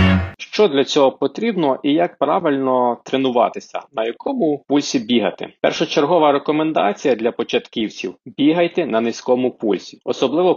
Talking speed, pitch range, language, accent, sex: 125 wpm, 120-155 Hz, Ukrainian, native, male